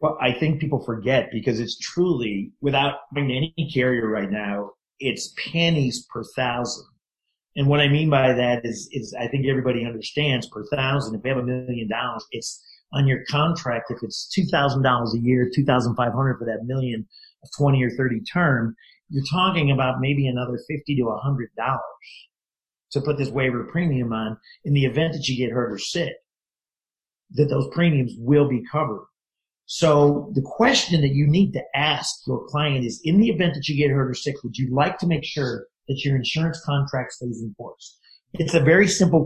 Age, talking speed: 40-59, 185 wpm